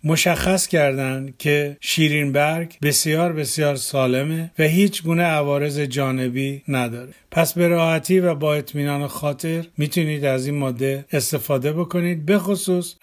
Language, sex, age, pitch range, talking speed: Persian, male, 50-69, 140-160 Hz, 130 wpm